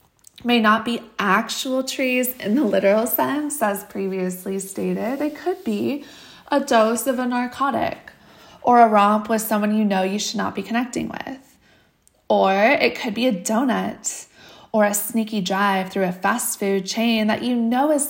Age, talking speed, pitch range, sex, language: 20-39, 170 wpm, 195-245 Hz, female, English